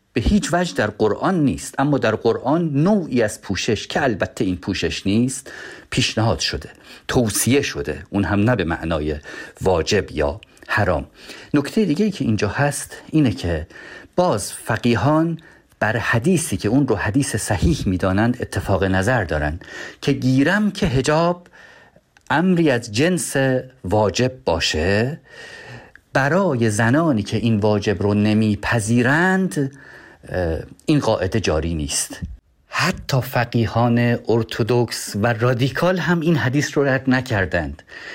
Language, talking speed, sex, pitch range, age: Persian, 130 wpm, male, 105-150 Hz, 50-69